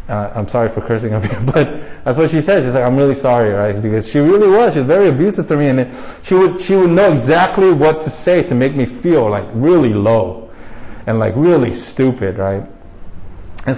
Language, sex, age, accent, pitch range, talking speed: English, male, 20-39, American, 120-180 Hz, 220 wpm